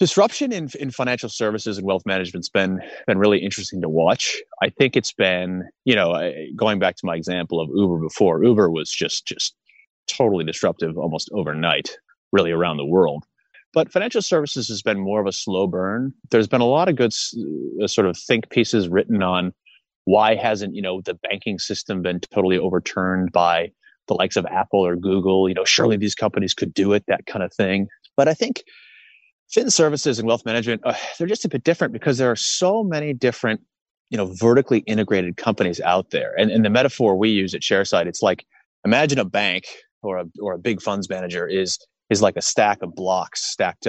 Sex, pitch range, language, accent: male, 95-135 Hz, English, American